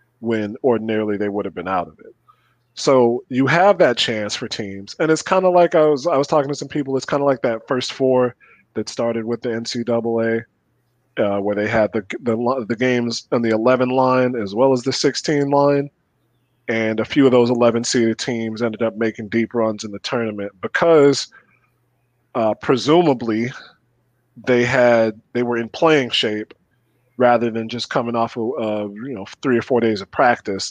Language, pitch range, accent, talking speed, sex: English, 110-125 Hz, American, 195 wpm, male